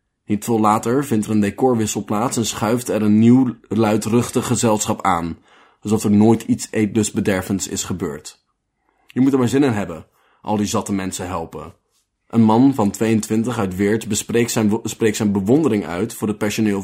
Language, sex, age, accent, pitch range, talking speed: Dutch, male, 20-39, Dutch, 105-120 Hz, 180 wpm